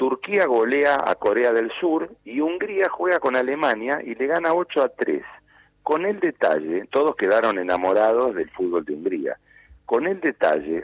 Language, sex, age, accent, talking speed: Spanish, male, 40-59, Argentinian, 165 wpm